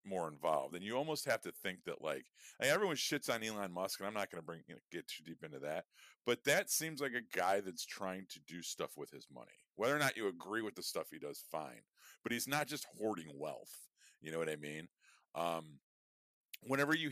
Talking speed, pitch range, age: 245 wpm, 85-115 Hz, 40-59